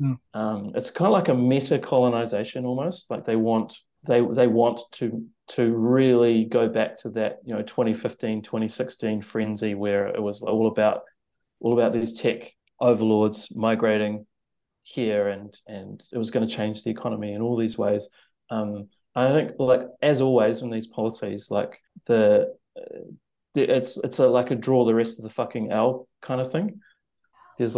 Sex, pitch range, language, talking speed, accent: male, 105-130 Hz, English, 175 wpm, Australian